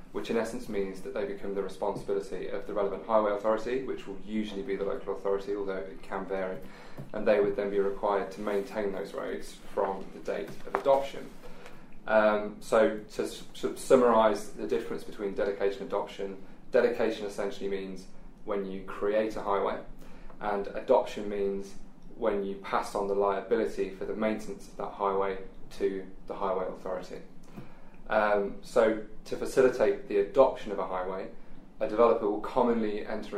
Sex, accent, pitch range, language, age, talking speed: male, British, 95-110 Hz, English, 20-39, 165 wpm